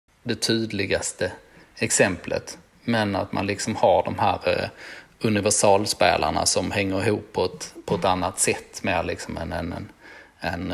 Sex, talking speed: male, 145 wpm